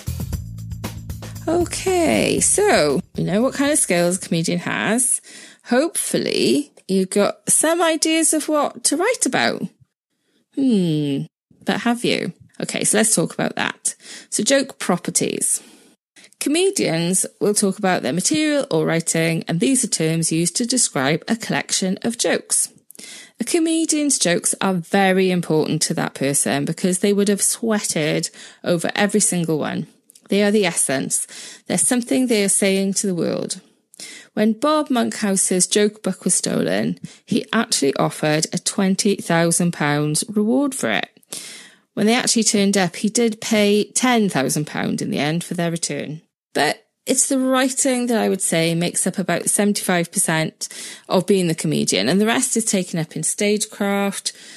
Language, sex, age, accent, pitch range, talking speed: English, female, 20-39, British, 170-240 Hz, 150 wpm